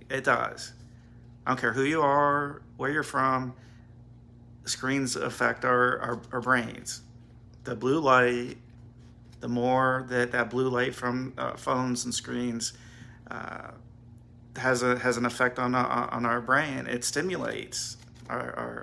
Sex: male